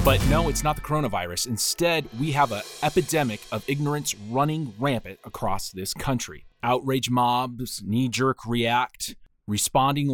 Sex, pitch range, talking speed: male, 110-145 Hz, 135 wpm